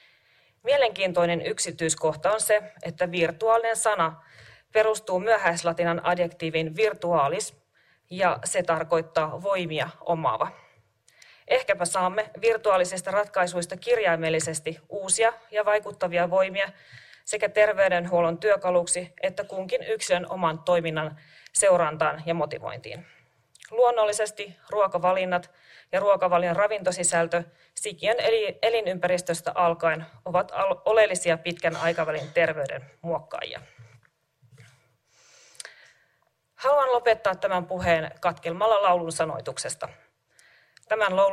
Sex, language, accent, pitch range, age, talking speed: female, Finnish, native, 165-210 Hz, 30-49, 85 wpm